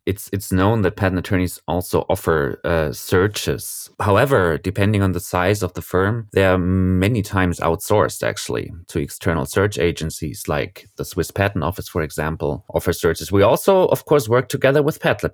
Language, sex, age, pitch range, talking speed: English, male, 30-49, 90-115 Hz, 175 wpm